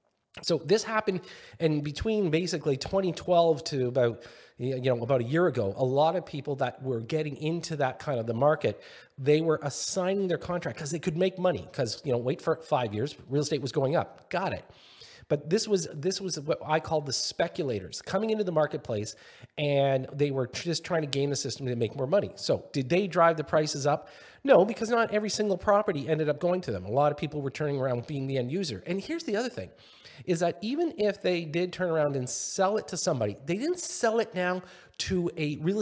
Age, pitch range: 40-59, 140-185 Hz